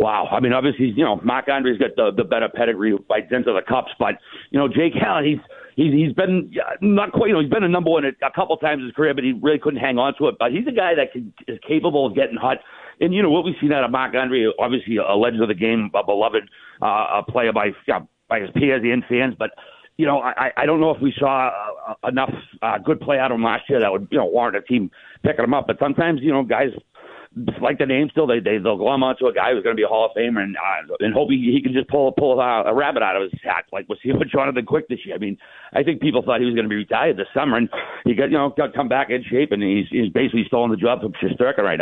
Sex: male